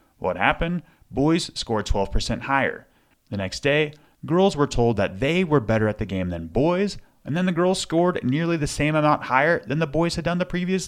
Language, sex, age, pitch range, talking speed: English, male, 30-49, 105-145 Hz, 210 wpm